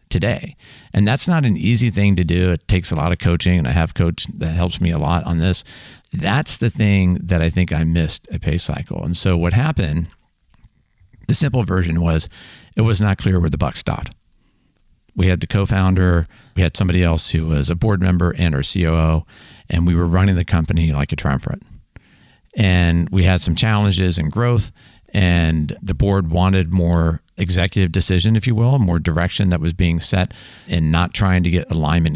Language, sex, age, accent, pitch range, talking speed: English, male, 50-69, American, 80-100 Hz, 200 wpm